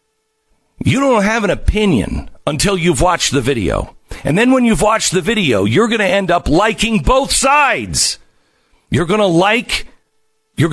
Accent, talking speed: American, 170 wpm